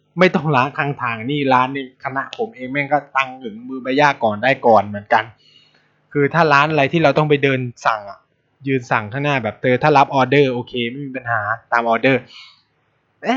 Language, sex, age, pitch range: Thai, male, 20-39, 125-165 Hz